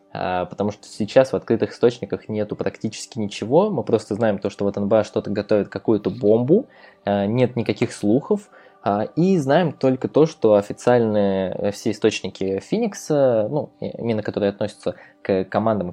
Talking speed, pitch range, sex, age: 145 wpm, 100-135 Hz, male, 20-39